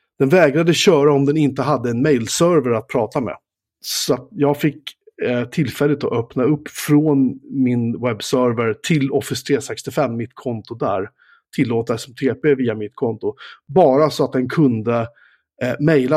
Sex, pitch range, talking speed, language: male, 120-145 Hz, 145 wpm, Swedish